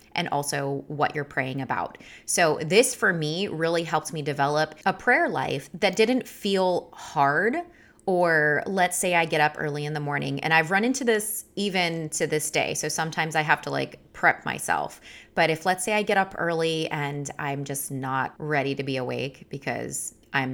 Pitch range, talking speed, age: 150-190 Hz, 195 wpm, 20-39